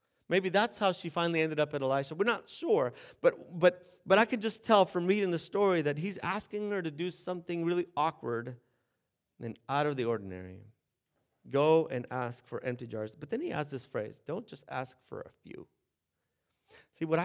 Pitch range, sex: 120-160 Hz, male